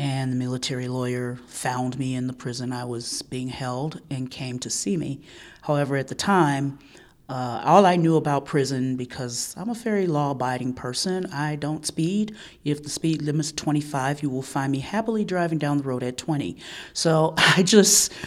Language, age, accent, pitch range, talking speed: English, 40-59, American, 125-150 Hz, 185 wpm